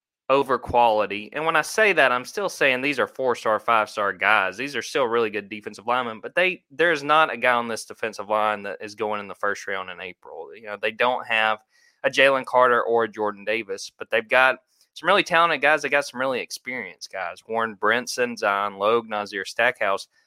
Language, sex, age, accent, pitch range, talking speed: English, male, 20-39, American, 105-125 Hz, 220 wpm